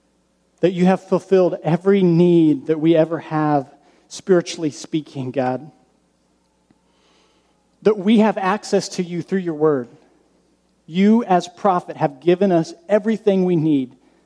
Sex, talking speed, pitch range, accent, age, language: male, 130 wpm, 145-180 Hz, American, 40-59, English